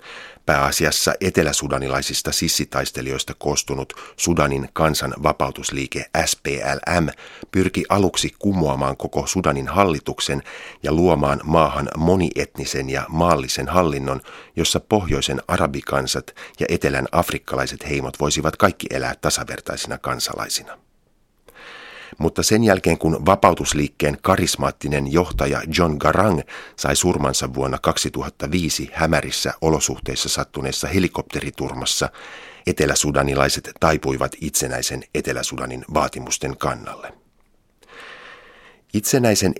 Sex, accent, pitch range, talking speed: male, native, 70-85 Hz, 85 wpm